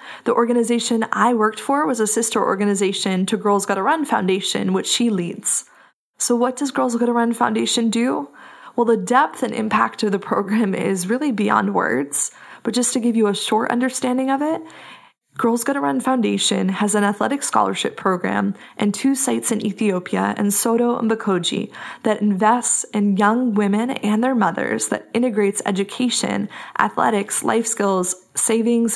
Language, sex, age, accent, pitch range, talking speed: English, female, 20-39, American, 205-245 Hz, 165 wpm